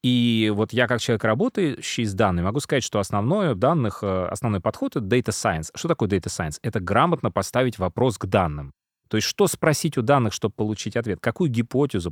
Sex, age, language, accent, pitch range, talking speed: male, 30-49, Russian, native, 100-130 Hz, 195 wpm